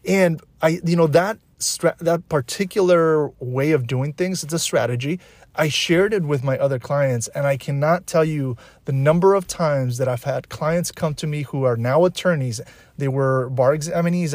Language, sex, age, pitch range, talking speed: English, male, 30-49, 130-155 Hz, 190 wpm